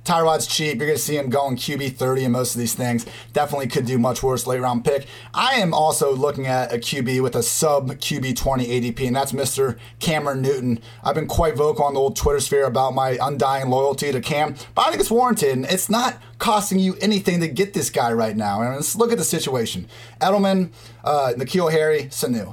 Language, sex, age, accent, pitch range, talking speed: English, male, 30-49, American, 130-185 Hz, 220 wpm